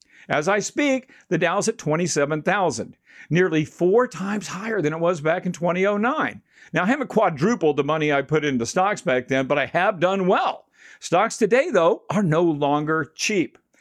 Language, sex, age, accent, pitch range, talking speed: English, male, 50-69, American, 150-215 Hz, 180 wpm